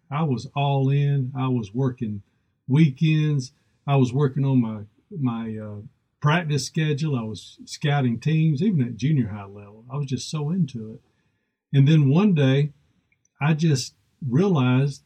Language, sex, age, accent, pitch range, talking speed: English, male, 50-69, American, 115-145 Hz, 155 wpm